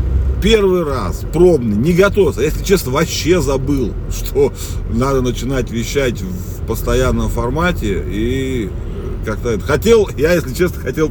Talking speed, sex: 125 wpm, male